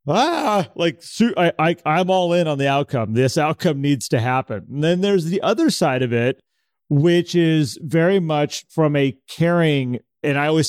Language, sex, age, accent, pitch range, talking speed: English, male, 30-49, American, 130-160 Hz, 185 wpm